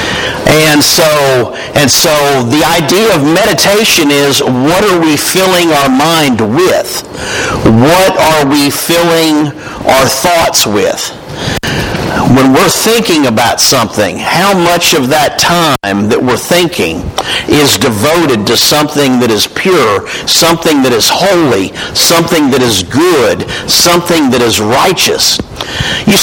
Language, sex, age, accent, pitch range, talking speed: English, male, 50-69, American, 150-195 Hz, 130 wpm